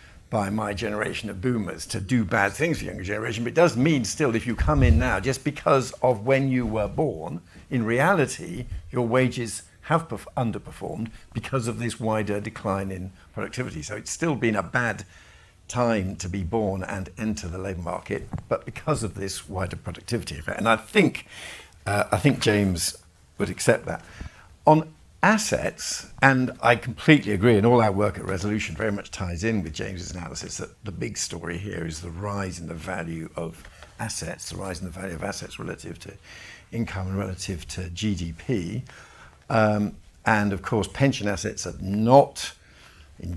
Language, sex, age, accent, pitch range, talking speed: English, male, 60-79, British, 90-115 Hz, 180 wpm